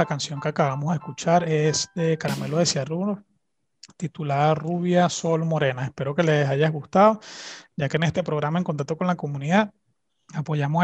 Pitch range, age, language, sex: 145-175 Hz, 30-49, Spanish, male